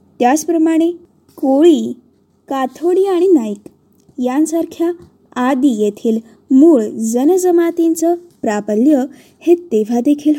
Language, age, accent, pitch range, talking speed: Marathi, 20-39, native, 250-340 Hz, 75 wpm